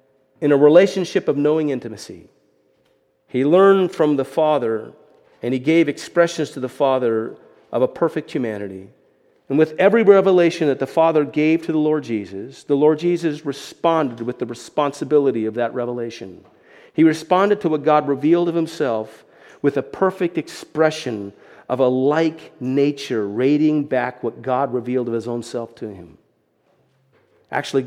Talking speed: 155 wpm